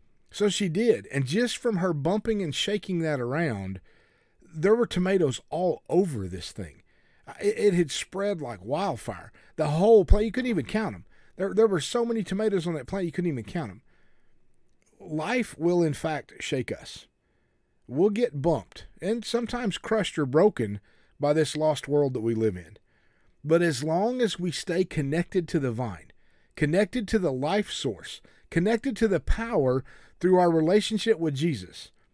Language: English